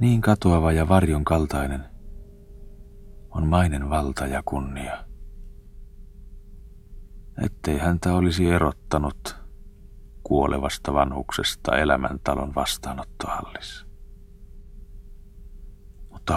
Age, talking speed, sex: 40-59, 70 wpm, male